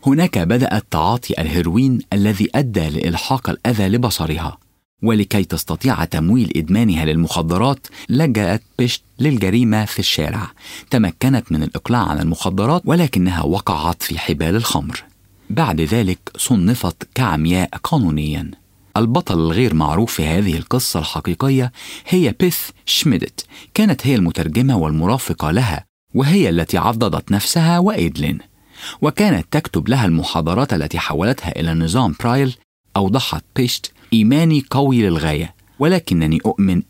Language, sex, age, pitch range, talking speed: English, male, 40-59, 85-130 Hz, 115 wpm